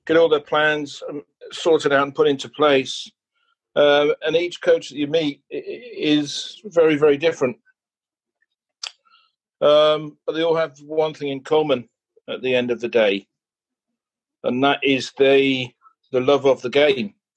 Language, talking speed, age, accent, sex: English, 155 wpm, 40-59, British, male